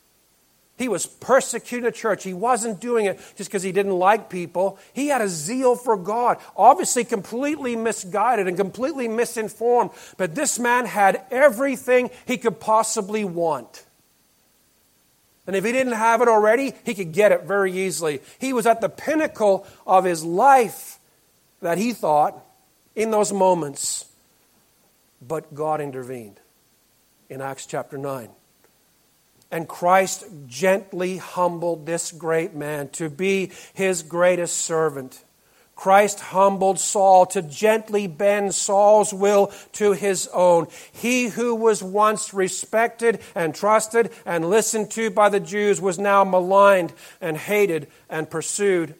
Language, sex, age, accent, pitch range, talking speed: English, male, 50-69, American, 175-220 Hz, 140 wpm